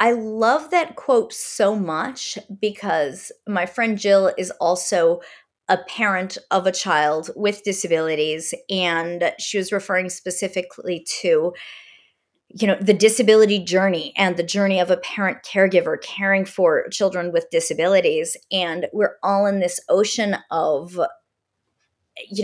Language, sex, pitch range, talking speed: English, female, 180-230 Hz, 135 wpm